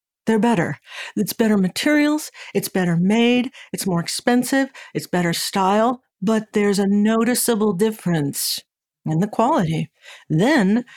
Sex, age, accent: female, 50-69, American